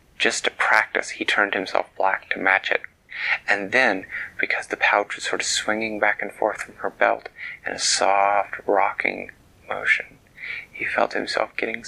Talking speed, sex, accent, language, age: 170 wpm, male, American, English, 30-49